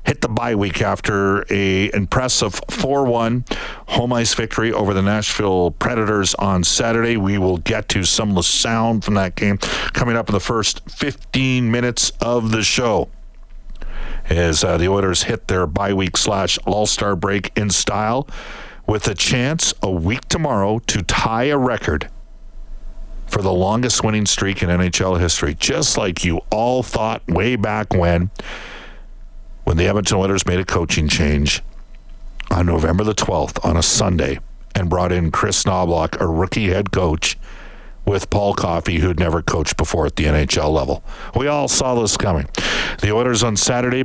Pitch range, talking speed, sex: 90-110 Hz, 165 wpm, male